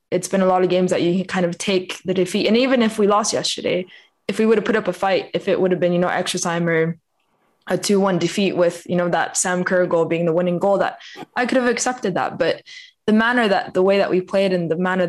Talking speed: 280 wpm